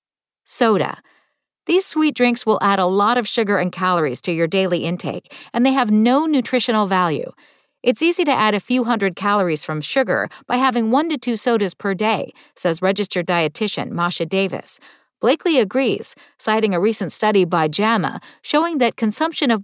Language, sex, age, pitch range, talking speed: English, female, 50-69, 180-255 Hz, 175 wpm